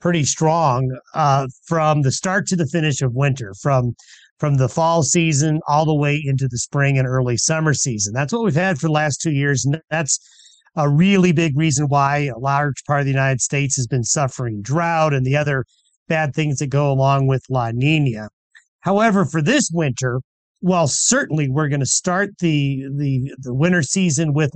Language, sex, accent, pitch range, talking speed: English, male, American, 135-170 Hz, 195 wpm